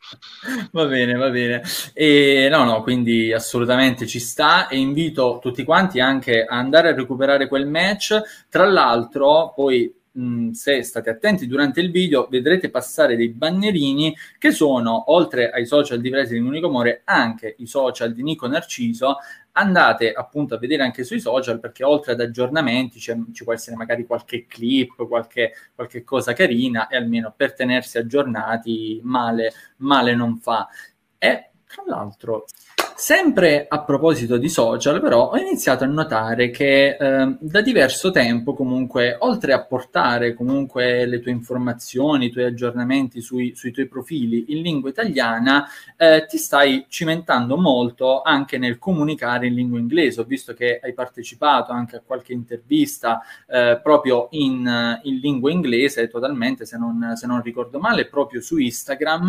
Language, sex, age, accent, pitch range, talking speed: Italian, male, 20-39, native, 120-145 Hz, 155 wpm